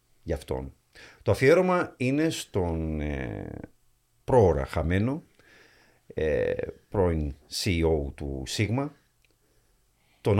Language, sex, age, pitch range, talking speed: Greek, male, 50-69, 85-125 Hz, 85 wpm